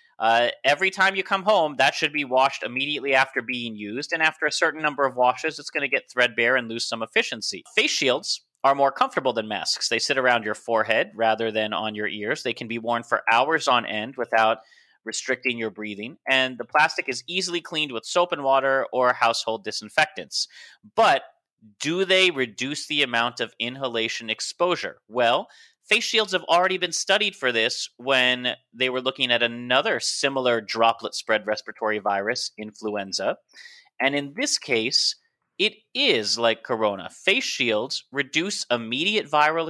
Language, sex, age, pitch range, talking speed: English, male, 30-49, 115-160 Hz, 170 wpm